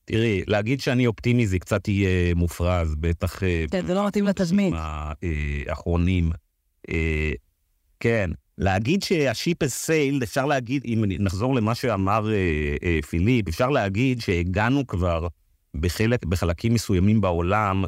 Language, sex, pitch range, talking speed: Hebrew, male, 85-115 Hz, 110 wpm